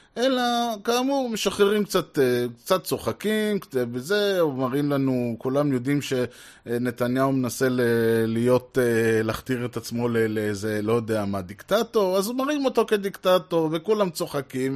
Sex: male